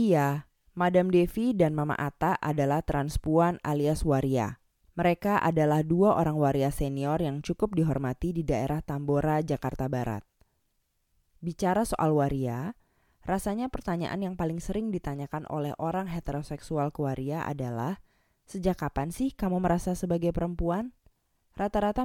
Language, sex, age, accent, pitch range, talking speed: Indonesian, female, 20-39, native, 140-180 Hz, 130 wpm